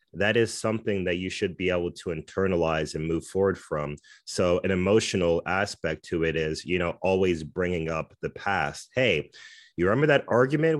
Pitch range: 80-95 Hz